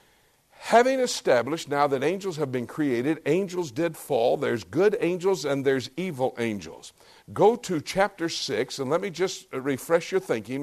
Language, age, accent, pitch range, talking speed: English, 60-79, American, 160-210 Hz, 165 wpm